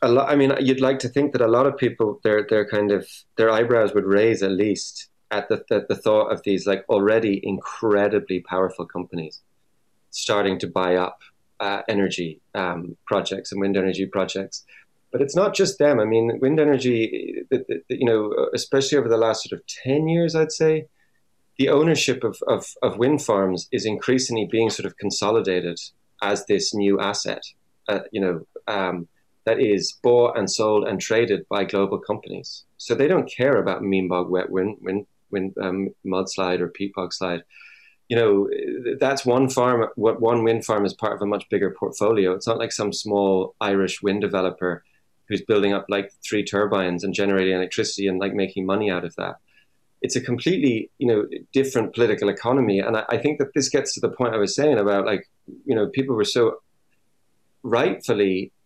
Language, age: English, 30-49